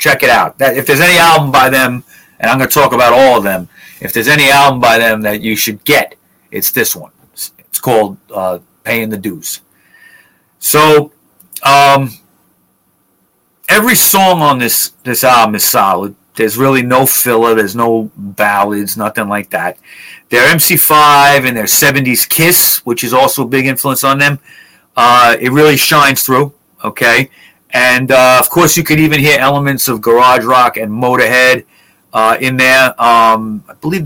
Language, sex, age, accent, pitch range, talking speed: English, male, 40-59, American, 115-140 Hz, 170 wpm